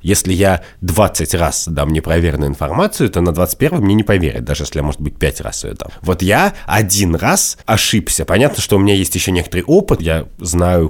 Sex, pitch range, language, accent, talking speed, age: male, 80-100 Hz, Russian, native, 200 wpm, 30-49